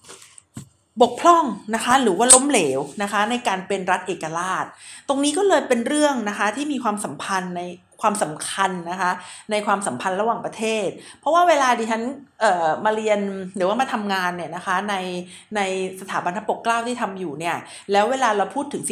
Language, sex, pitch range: Thai, female, 195-255 Hz